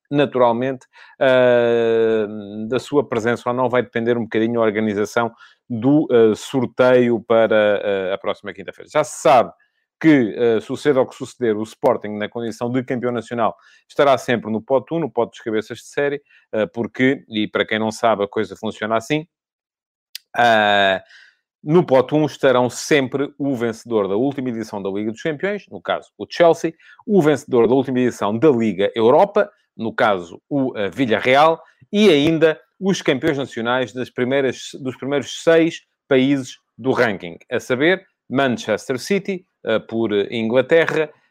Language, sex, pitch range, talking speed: Portuguese, male, 115-150 Hz, 155 wpm